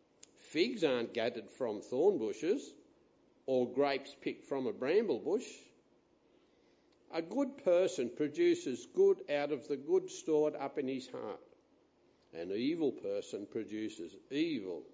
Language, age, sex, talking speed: English, 60-79, male, 130 wpm